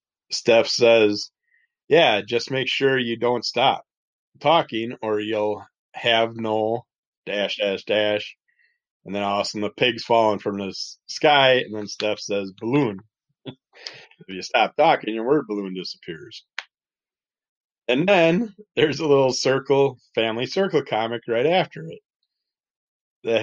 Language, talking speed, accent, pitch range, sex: English, 135 wpm, American, 110-150 Hz, male